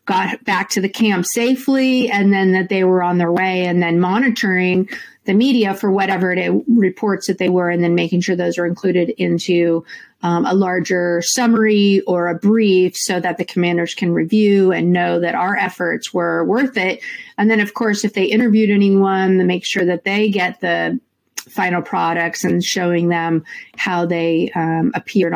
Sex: female